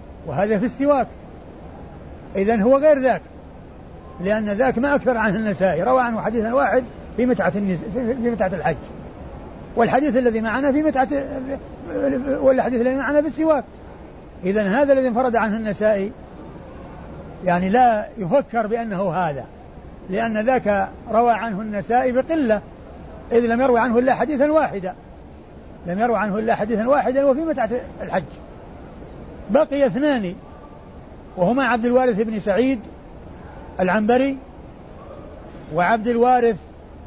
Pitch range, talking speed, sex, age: 195-255 Hz, 125 wpm, male, 60-79